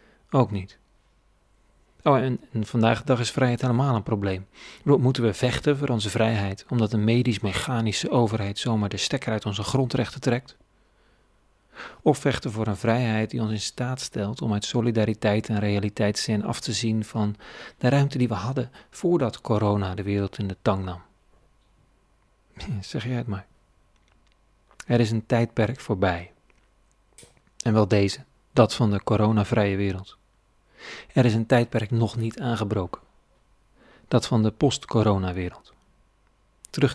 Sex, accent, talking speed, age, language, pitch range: male, Dutch, 150 wpm, 40-59, Dutch, 105-125 Hz